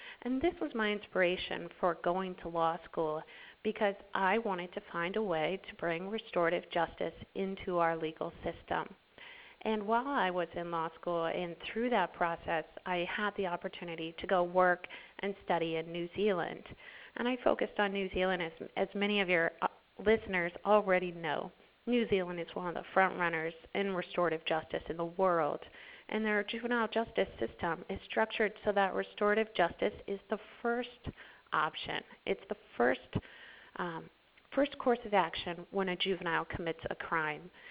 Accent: American